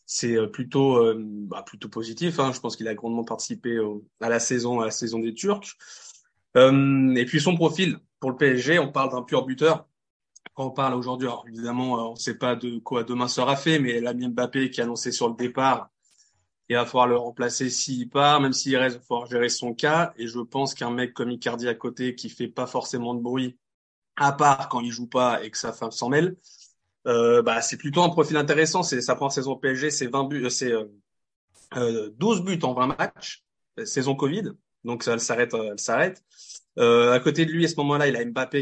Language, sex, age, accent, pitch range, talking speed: French, male, 20-39, French, 120-145 Hz, 220 wpm